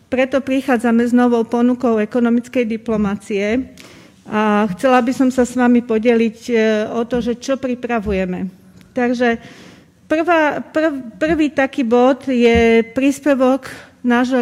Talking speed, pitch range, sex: 120 wpm, 220-245 Hz, female